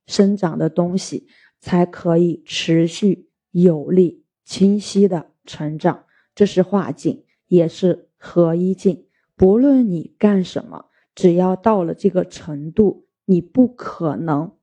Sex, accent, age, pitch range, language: female, native, 20-39, 170-200 Hz, Chinese